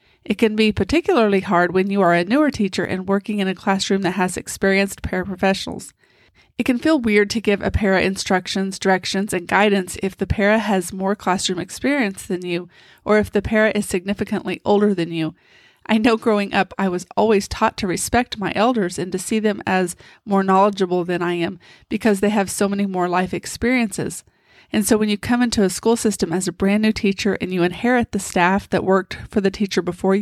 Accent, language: American, English